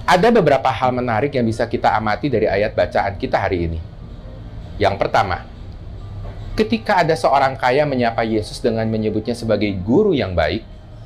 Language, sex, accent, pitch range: Indonesian, male, native, 100-140 Hz